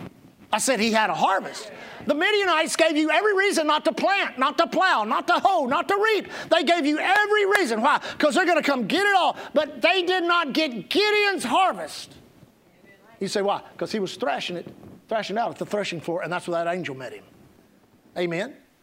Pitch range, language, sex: 220-315 Hz, English, male